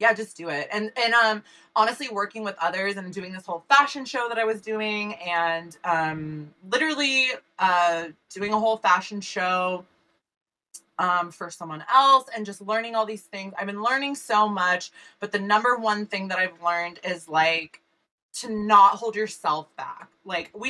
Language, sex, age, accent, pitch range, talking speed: English, female, 20-39, American, 170-225 Hz, 180 wpm